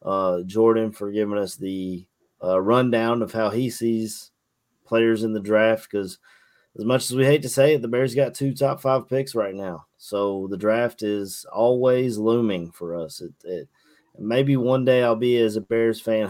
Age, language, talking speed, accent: 30-49, English, 195 wpm, American